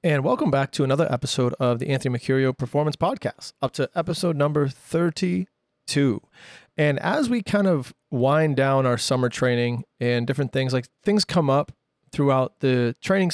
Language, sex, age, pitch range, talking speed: English, male, 30-49, 125-140 Hz, 165 wpm